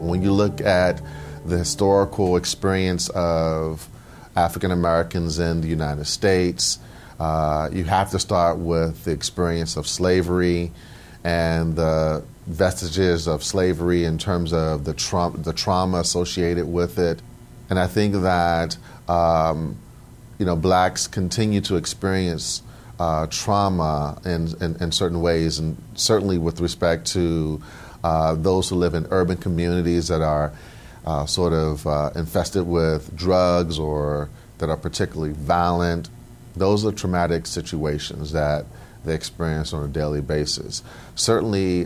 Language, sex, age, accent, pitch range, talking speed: English, male, 40-59, American, 80-95 Hz, 135 wpm